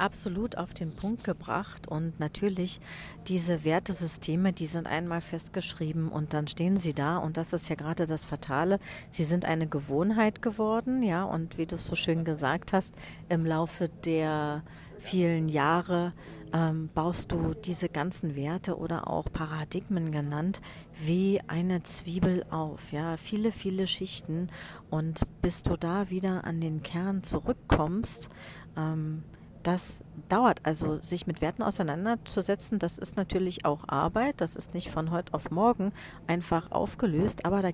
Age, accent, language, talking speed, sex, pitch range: 40-59, German, German, 150 wpm, female, 160-190 Hz